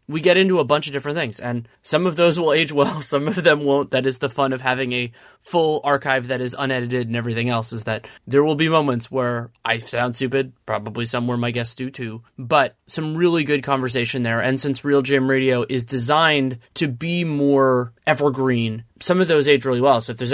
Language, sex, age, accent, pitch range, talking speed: English, male, 20-39, American, 120-145 Hz, 225 wpm